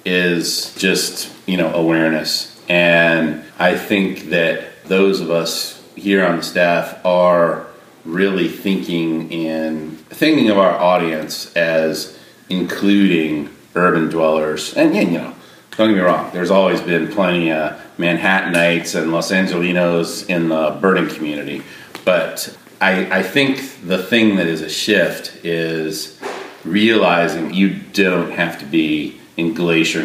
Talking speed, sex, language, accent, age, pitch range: 135 wpm, male, English, American, 40-59, 80-95 Hz